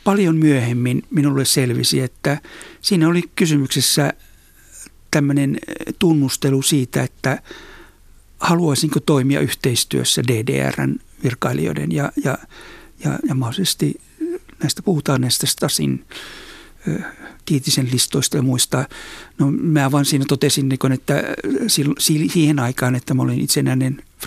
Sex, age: male, 60-79